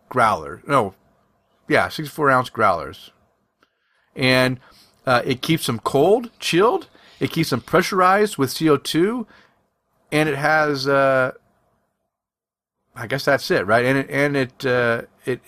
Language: English